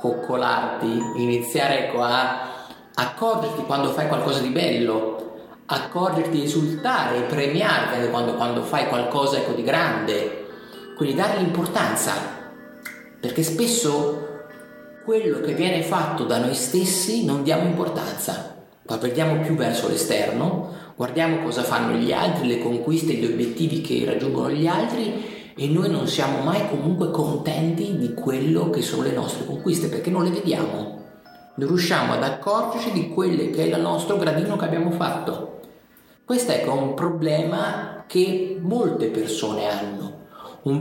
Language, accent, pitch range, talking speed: Italian, native, 135-185 Hz, 140 wpm